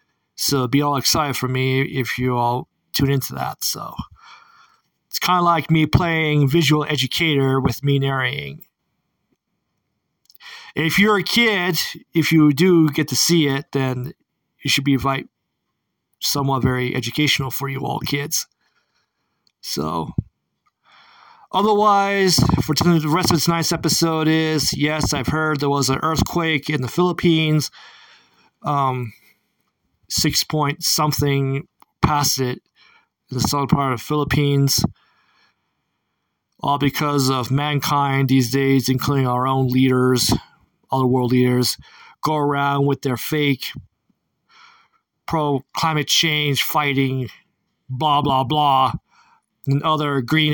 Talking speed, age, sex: 120 wpm, 40-59, male